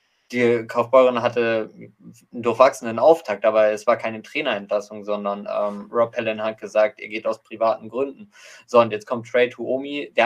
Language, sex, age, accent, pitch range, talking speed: German, male, 20-39, German, 110-130 Hz, 170 wpm